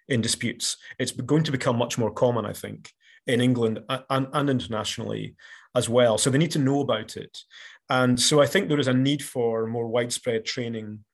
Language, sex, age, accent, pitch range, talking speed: English, male, 30-49, British, 125-150 Hz, 200 wpm